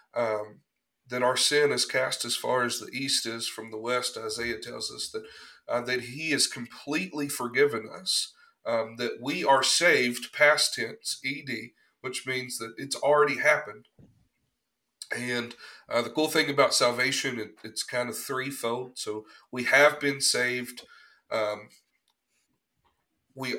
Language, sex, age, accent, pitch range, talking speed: English, male, 40-59, American, 120-150 Hz, 150 wpm